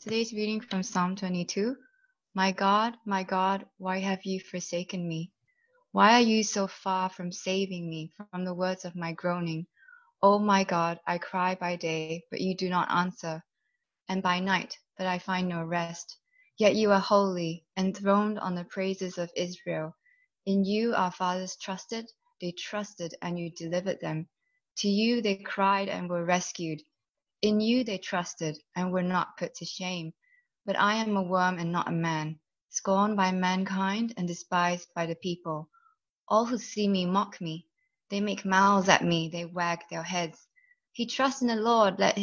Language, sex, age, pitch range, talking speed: English, female, 20-39, 175-210 Hz, 175 wpm